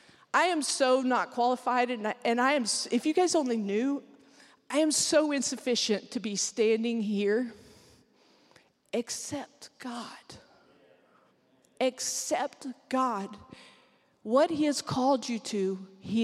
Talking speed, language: 125 wpm, English